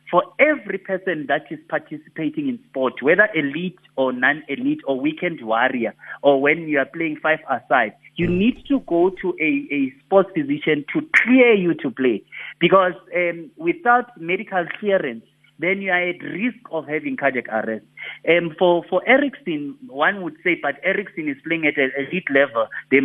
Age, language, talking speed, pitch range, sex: 30-49, English, 170 wpm, 140-195 Hz, male